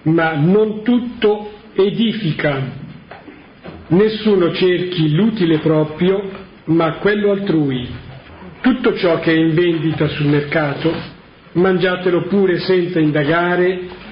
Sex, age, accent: male, 50-69, native